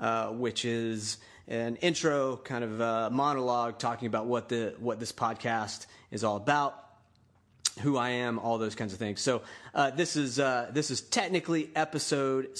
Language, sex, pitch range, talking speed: English, male, 115-135 Hz, 170 wpm